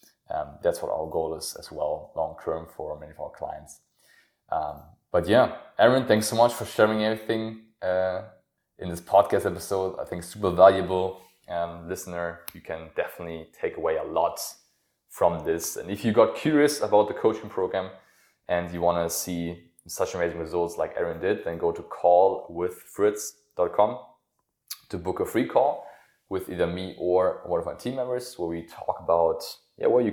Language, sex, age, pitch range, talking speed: English, male, 20-39, 85-120 Hz, 180 wpm